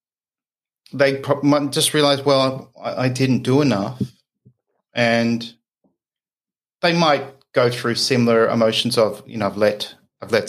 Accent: Australian